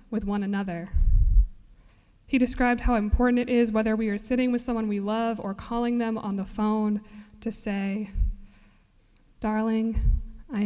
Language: English